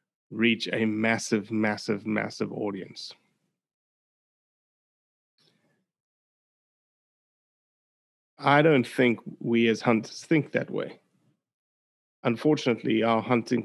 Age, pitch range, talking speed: 30-49, 110-125 Hz, 80 wpm